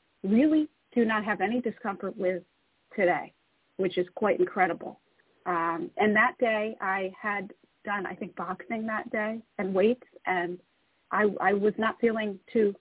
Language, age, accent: English, 40-59, American